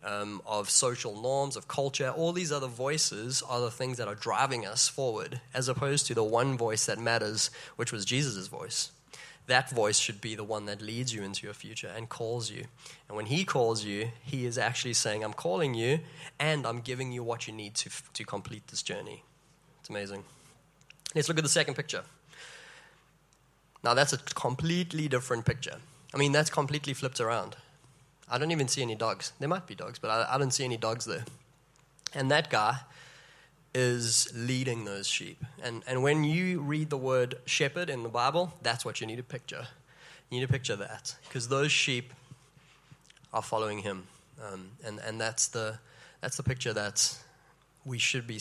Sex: male